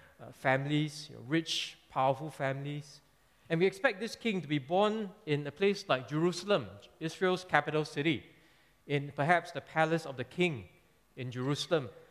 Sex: male